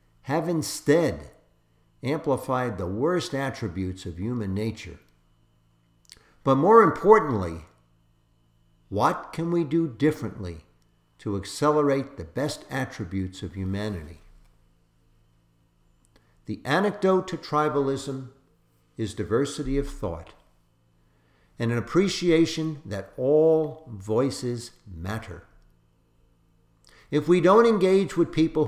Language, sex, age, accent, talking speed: English, male, 60-79, American, 95 wpm